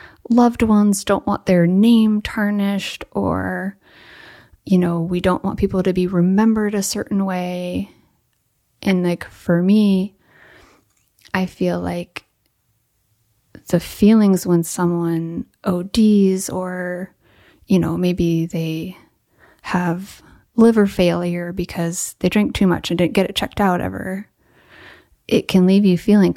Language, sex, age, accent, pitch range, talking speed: English, female, 30-49, American, 170-200 Hz, 130 wpm